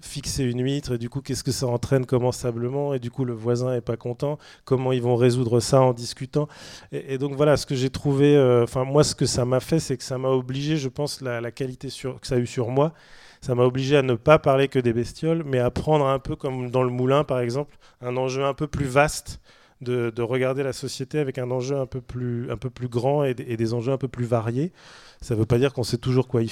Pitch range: 125-145 Hz